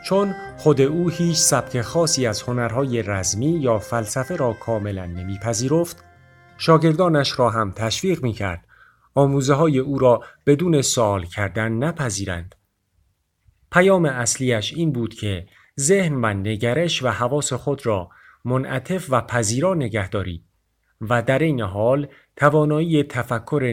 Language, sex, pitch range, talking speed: Persian, male, 105-145 Hz, 125 wpm